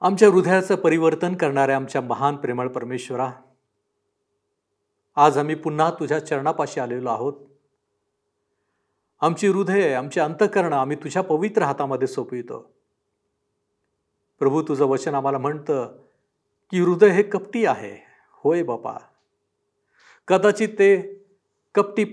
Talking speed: 105 wpm